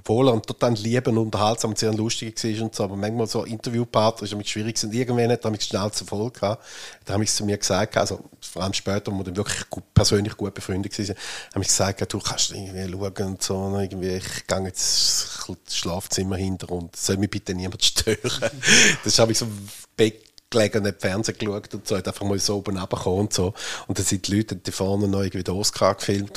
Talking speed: 240 wpm